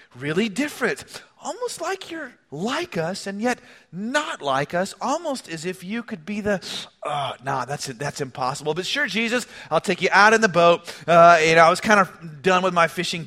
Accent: American